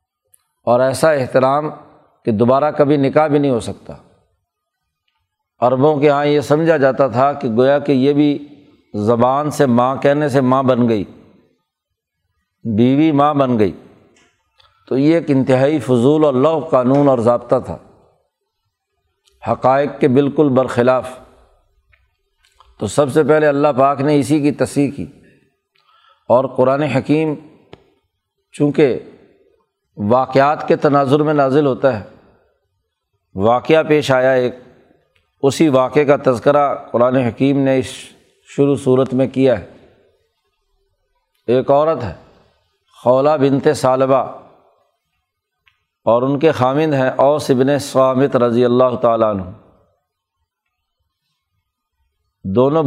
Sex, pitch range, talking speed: male, 125-150 Hz, 120 wpm